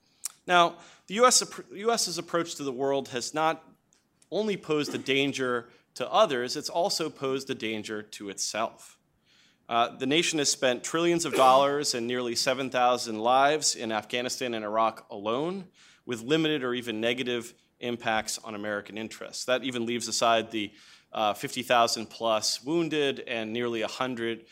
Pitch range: 115-150 Hz